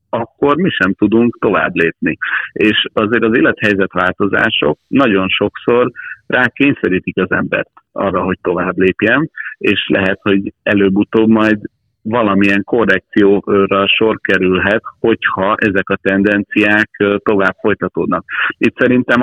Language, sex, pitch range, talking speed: Hungarian, male, 95-110 Hz, 115 wpm